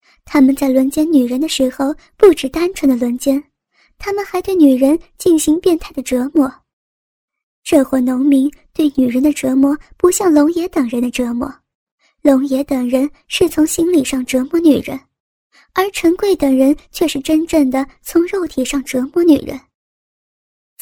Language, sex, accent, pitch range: Chinese, male, native, 270-335 Hz